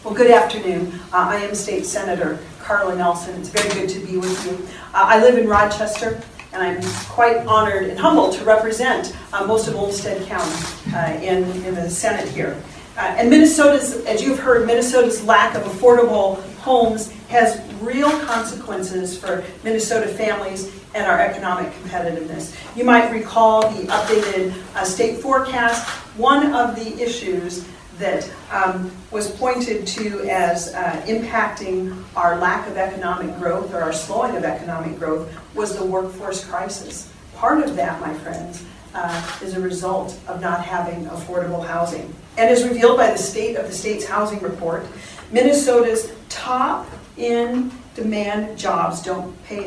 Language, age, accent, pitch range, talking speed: English, 40-59, American, 180-230 Hz, 155 wpm